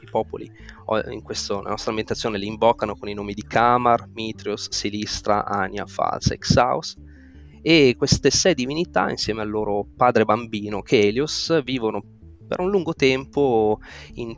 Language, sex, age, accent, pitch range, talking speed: Italian, male, 20-39, native, 100-120 Hz, 140 wpm